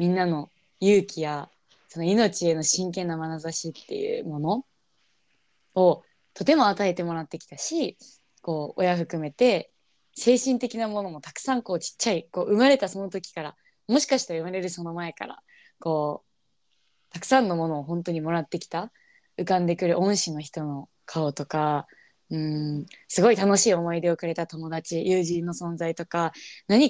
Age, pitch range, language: 20-39, 165-210 Hz, Japanese